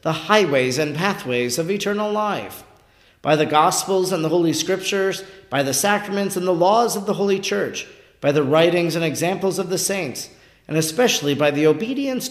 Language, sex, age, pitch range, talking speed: English, male, 50-69, 140-195 Hz, 180 wpm